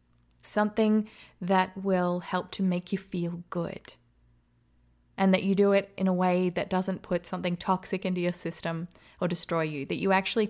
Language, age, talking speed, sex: English, 20-39, 175 wpm, female